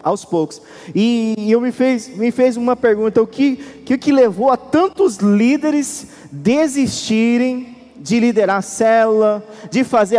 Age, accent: 20-39, Brazilian